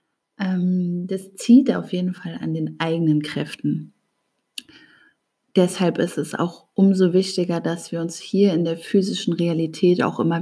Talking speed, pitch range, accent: 145 wpm, 170-215 Hz, German